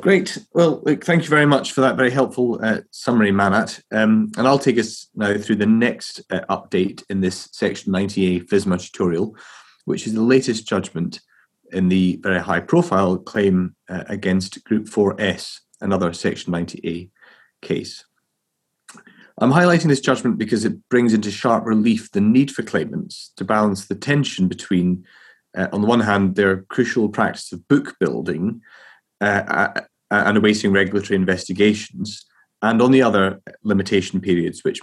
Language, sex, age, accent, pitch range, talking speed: English, male, 30-49, British, 95-125 Hz, 155 wpm